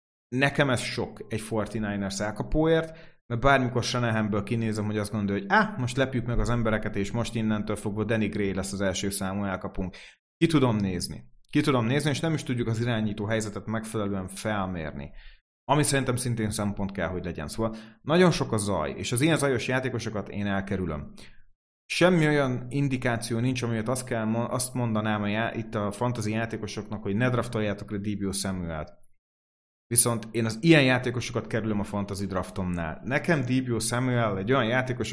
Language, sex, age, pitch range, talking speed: Hungarian, male, 30-49, 100-130 Hz, 170 wpm